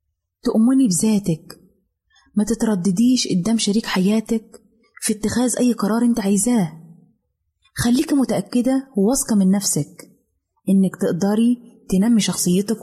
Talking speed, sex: 105 wpm, female